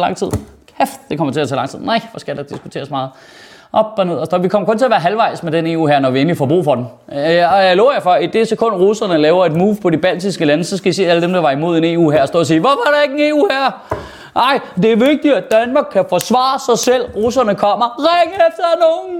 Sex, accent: male, native